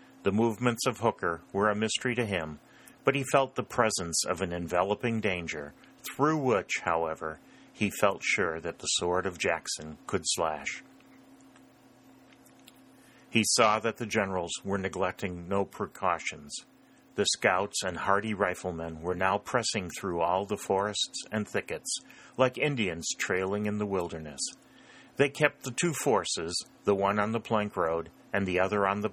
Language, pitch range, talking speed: English, 90-110 Hz, 155 wpm